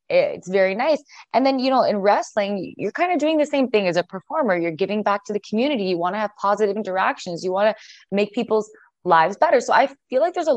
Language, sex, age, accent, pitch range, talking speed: English, female, 20-39, American, 175-240 Hz, 250 wpm